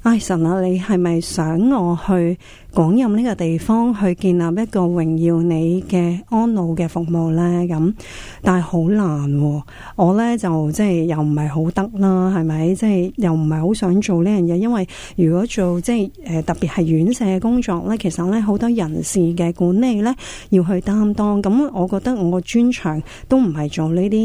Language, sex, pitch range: Chinese, female, 165-205 Hz